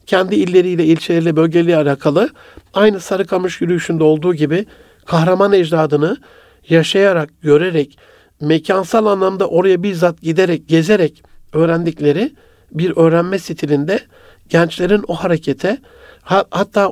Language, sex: Turkish, male